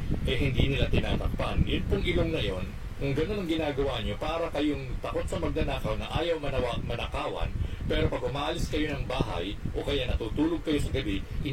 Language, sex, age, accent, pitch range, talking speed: Filipino, male, 50-69, native, 95-115 Hz, 180 wpm